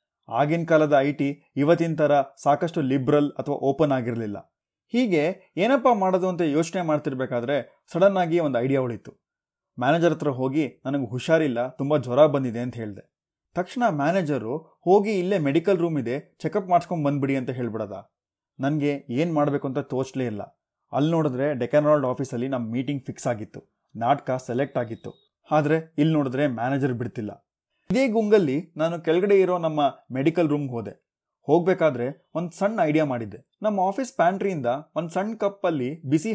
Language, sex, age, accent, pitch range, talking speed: Kannada, male, 30-49, native, 130-165 Hz, 145 wpm